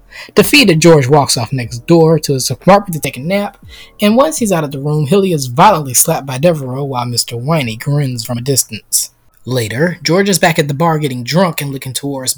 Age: 20-39